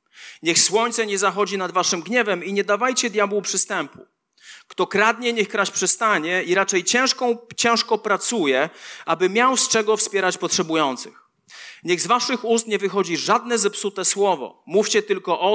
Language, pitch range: Polish, 175-225 Hz